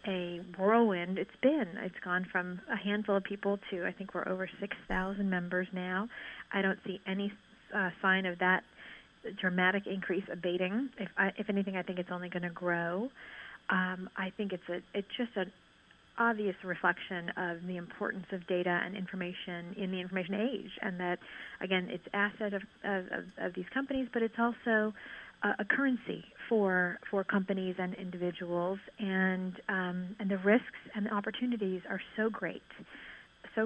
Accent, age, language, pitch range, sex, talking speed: American, 40-59, English, 180-200 Hz, female, 165 wpm